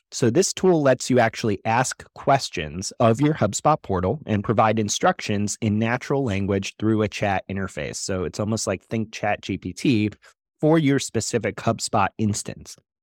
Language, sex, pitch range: English, male, 105-130 Hz